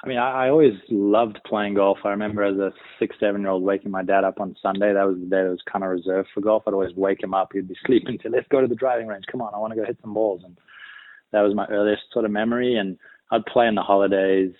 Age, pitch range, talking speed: 20-39, 95-100 Hz, 285 wpm